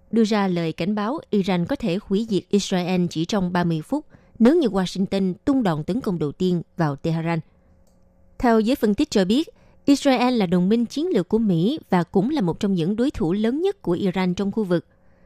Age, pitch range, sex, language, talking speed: 20-39, 180-225 Hz, female, Vietnamese, 215 wpm